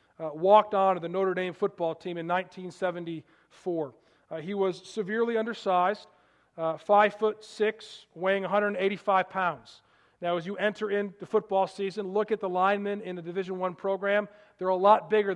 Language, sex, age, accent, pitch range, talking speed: English, male, 40-59, American, 175-205 Hz, 165 wpm